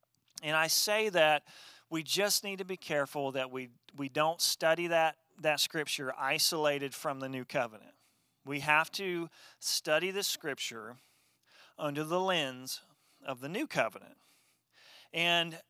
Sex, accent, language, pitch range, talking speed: male, American, English, 140-170 Hz, 140 wpm